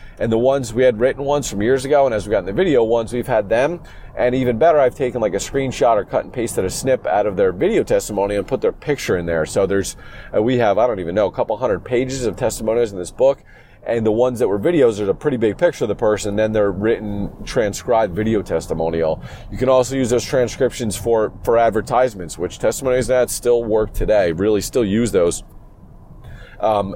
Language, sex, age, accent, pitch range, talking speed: English, male, 40-59, American, 105-130 Hz, 230 wpm